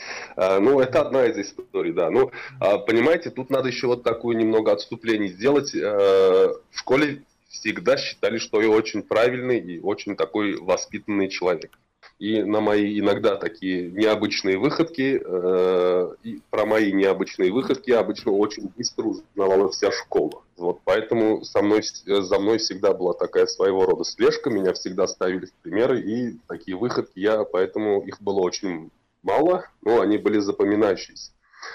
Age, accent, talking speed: 20-39, native, 145 wpm